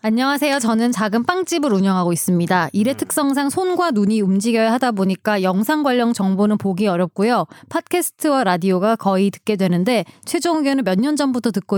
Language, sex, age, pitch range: Korean, female, 20-39, 195-275 Hz